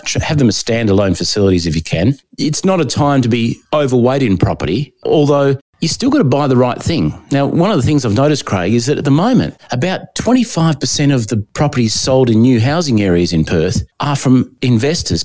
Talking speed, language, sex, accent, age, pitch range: 215 wpm, English, male, Australian, 40-59, 115-150 Hz